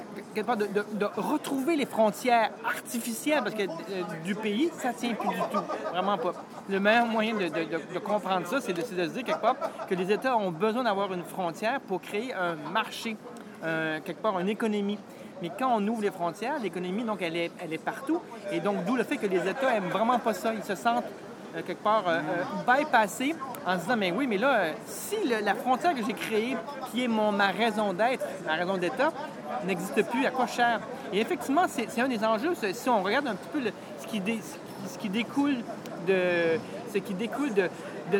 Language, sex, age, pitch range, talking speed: French, male, 30-49, 195-250 Hz, 230 wpm